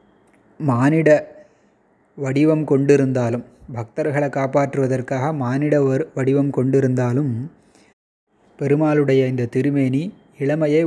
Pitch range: 130-155 Hz